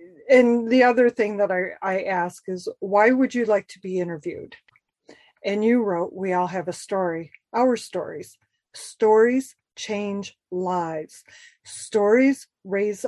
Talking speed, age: 140 wpm, 40-59